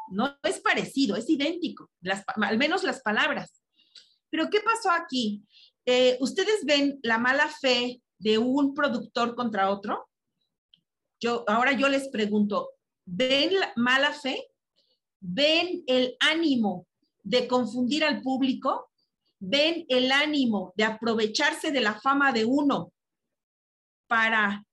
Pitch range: 220-275 Hz